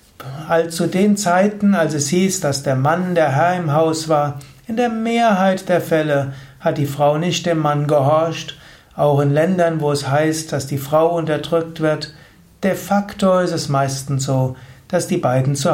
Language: German